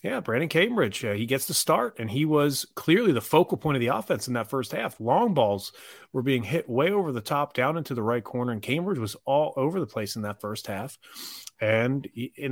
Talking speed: 240 wpm